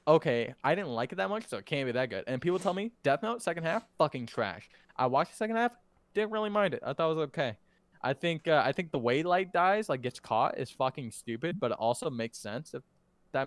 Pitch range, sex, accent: 115-155 Hz, male, American